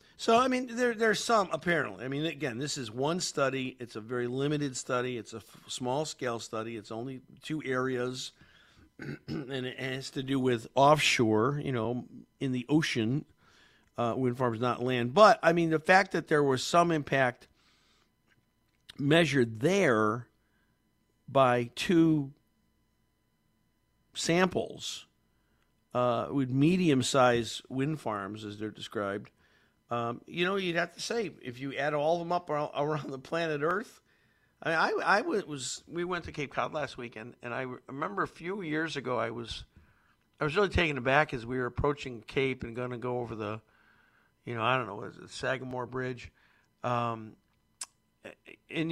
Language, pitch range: English, 120-155 Hz